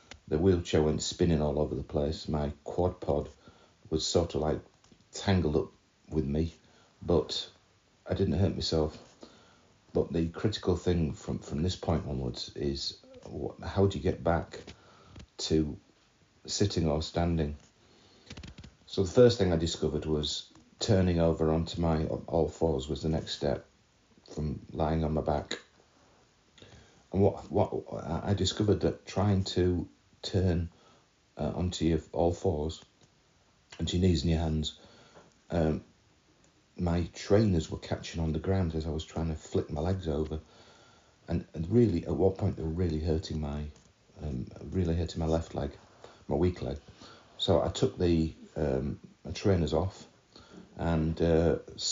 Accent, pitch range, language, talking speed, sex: British, 80-90 Hz, English, 155 wpm, male